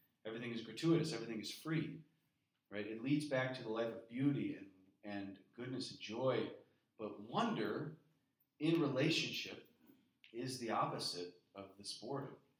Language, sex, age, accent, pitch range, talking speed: English, male, 30-49, American, 100-135 Hz, 145 wpm